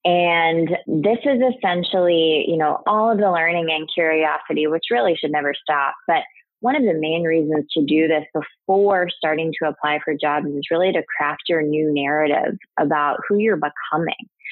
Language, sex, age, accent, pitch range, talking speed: English, female, 20-39, American, 150-190 Hz, 180 wpm